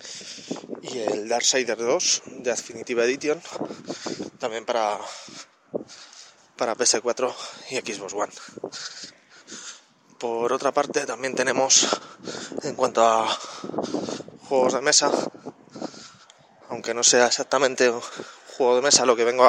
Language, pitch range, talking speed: Spanish, 120-145 Hz, 105 wpm